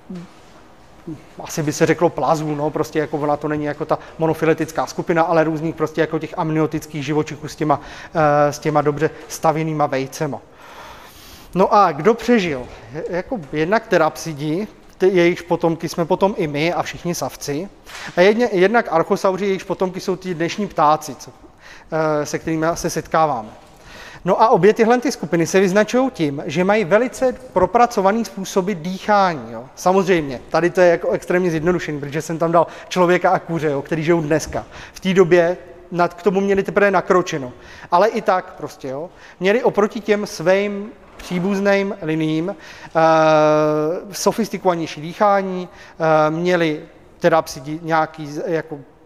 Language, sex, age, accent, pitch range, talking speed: Czech, male, 30-49, native, 155-190 Hz, 150 wpm